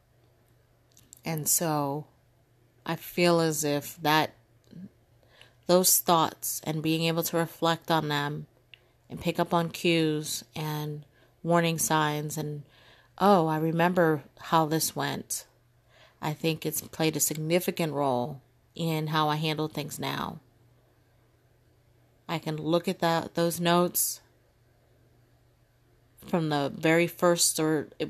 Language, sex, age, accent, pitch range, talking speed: English, female, 30-49, American, 120-165 Hz, 120 wpm